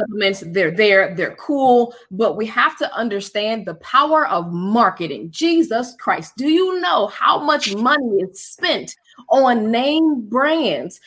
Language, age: English, 20-39